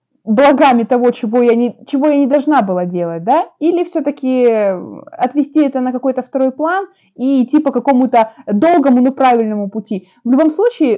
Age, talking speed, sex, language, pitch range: 20-39, 160 wpm, female, Russian, 200-265 Hz